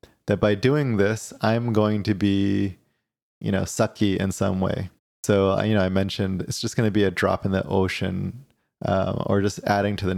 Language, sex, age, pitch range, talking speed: English, male, 20-39, 95-110 Hz, 200 wpm